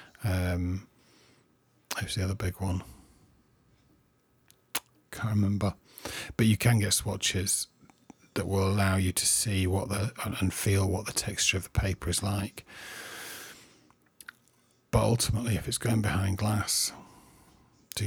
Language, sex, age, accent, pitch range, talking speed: English, male, 40-59, British, 100-120 Hz, 130 wpm